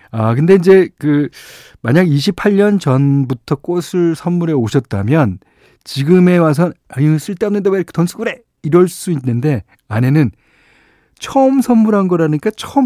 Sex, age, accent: male, 40-59, native